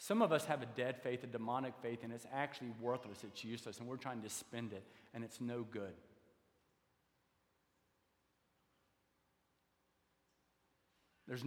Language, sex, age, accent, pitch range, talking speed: English, male, 40-59, American, 115-150 Hz, 140 wpm